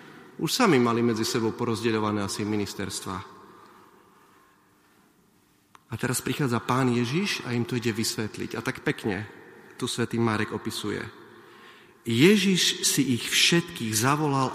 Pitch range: 110-175 Hz